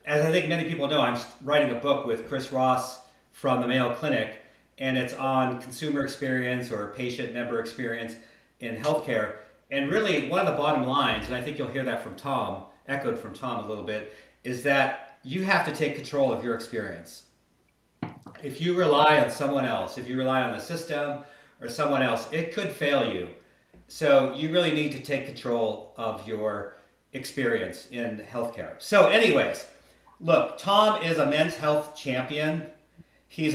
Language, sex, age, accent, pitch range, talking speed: English, male, 50-69, American, 130-155 Hz, 180 wpm